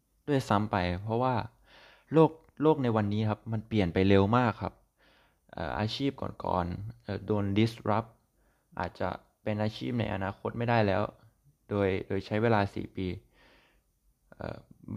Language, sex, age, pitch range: Thai, male, 20-39, 95-115 Hz